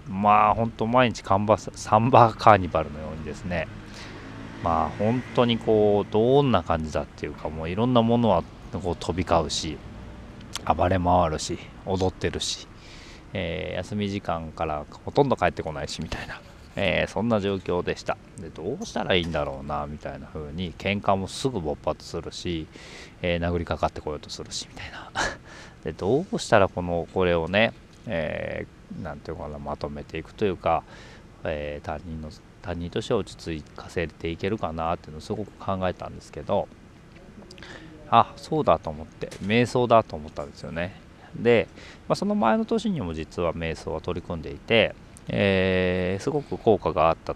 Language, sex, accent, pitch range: Japanese, male, native, 80-105 Hz